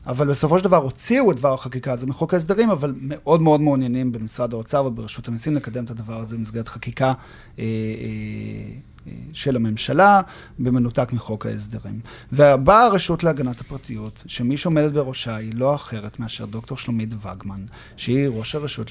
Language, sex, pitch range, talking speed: Hebrew, male, 115-150 Hz, 160 wpm